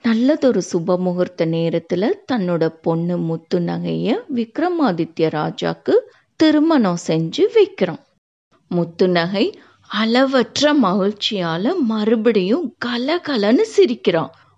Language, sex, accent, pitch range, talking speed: Tamil, female, native, 170-280 Hz, 70 wpm